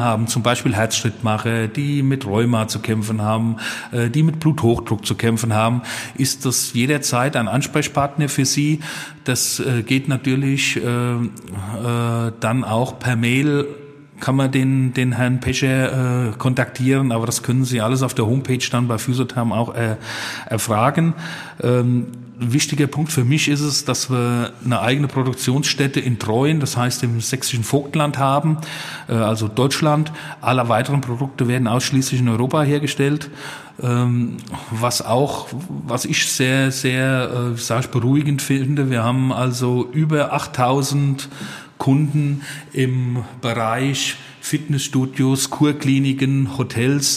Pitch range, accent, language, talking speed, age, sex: 120-140 Hz, German, German, 125 wpm, 40-59, male